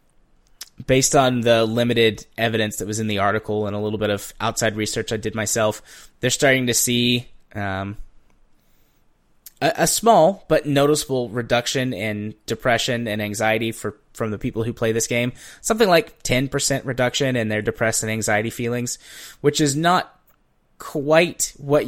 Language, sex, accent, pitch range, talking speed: English, male, American, 105-130 Hz, 160 wpm